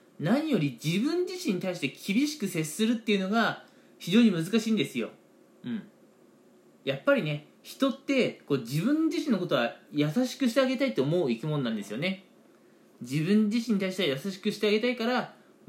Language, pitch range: Japanese, 155-235 Hz